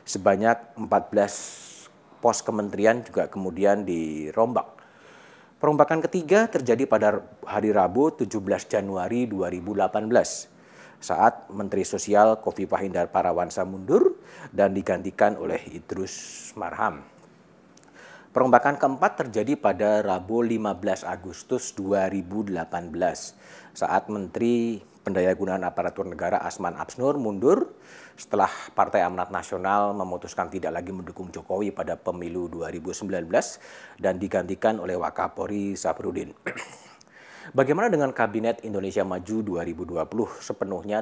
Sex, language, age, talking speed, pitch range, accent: male, Indonesian, 40-59, 100 wpm, 95-115 Hz, native